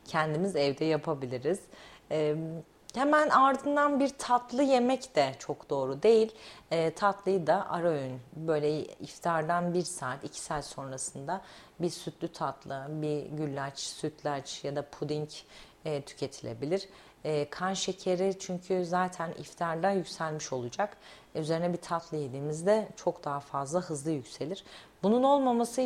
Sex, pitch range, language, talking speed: female, 145-180 Hz, Turkish, 130 wpm